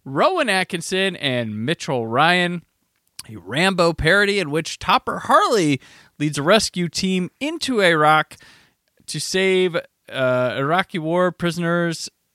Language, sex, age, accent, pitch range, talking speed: English, male, 30-49, American, 125-170 Hz, 115 wpm